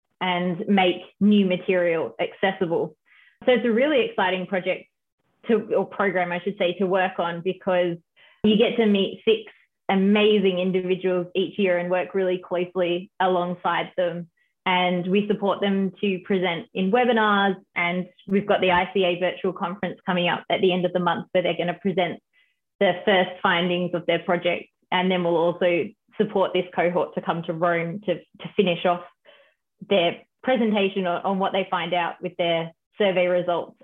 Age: 20-39